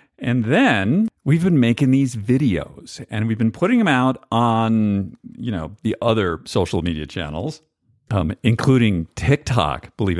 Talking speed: 145 wpm